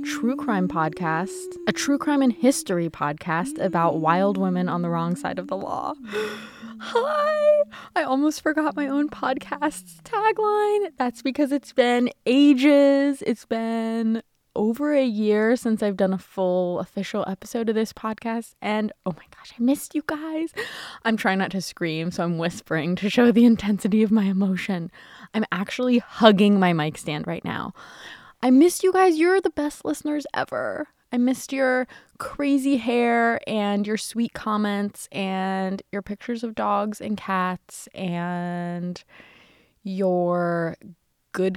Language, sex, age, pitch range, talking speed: English, female, 20-39, 185-255 Hz, 155 wpm